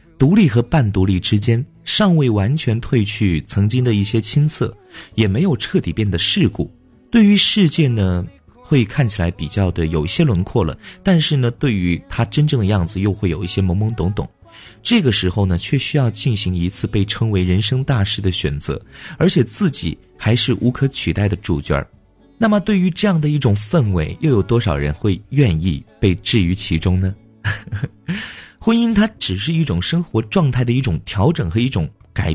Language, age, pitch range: Chinese, 30-49, 95-140 Hz